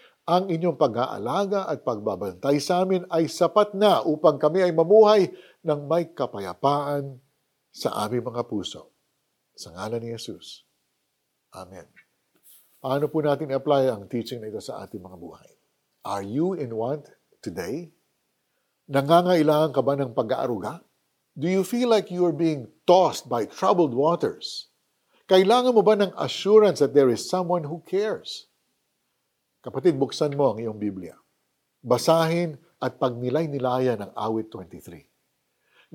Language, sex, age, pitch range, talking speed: Filipino, male, 50-69, 135-190 Hz, 135 wpm